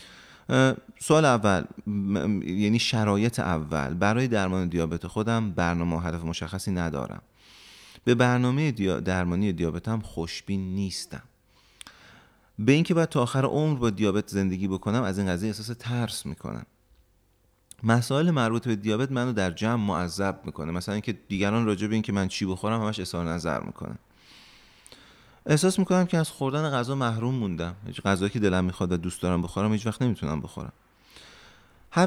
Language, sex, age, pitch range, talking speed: Persian, male, 30-49, 95-120 Hz, 150 wpm